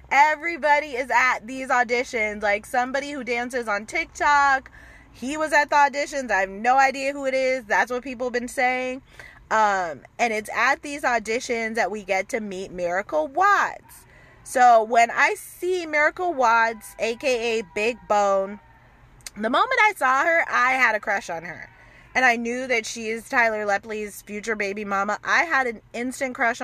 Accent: American